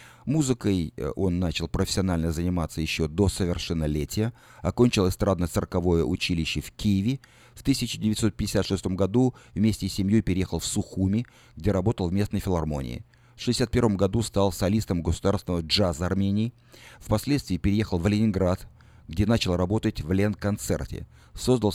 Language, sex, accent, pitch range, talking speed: Russian, male, native, 85-115 Hz, 125 wpm